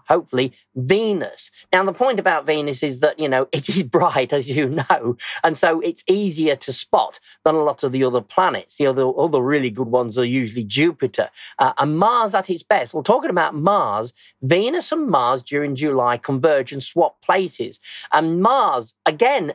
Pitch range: 150-195 Hz